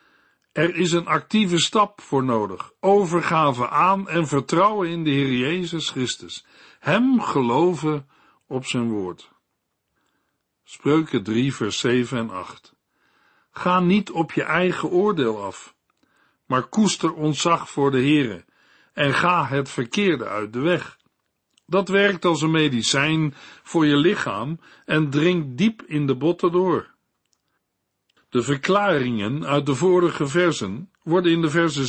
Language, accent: Dutch, Dutch